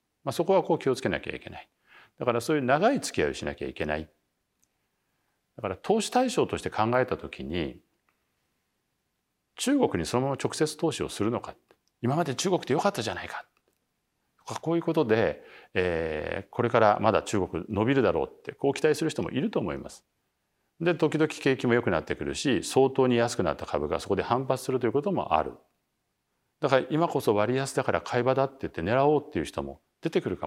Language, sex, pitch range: Japanese, male, 110-160 Hz